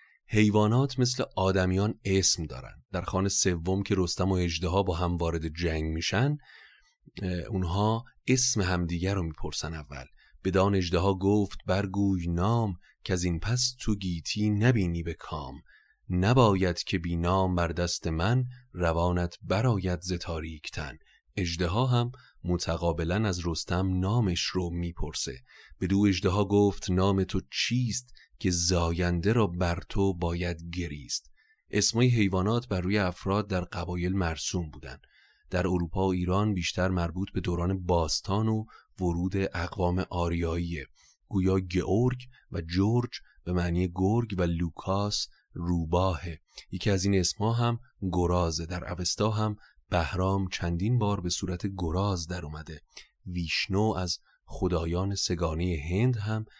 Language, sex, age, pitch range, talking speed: Persian, male, 30-49, 85-100 Hz, 135 wpm